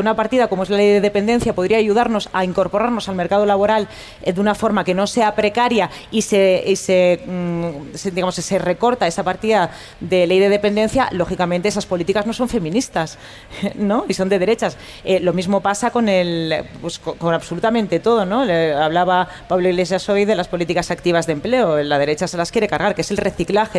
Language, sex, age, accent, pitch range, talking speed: Spanish, female, 30-49, Spanish, 180-220 Hz, 200 wpm